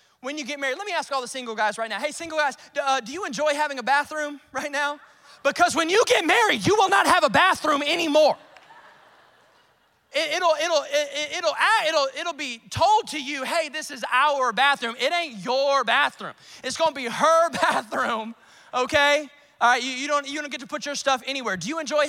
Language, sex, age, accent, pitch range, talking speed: English, male, 20-39, American, 255-305 Hz, 215 wpm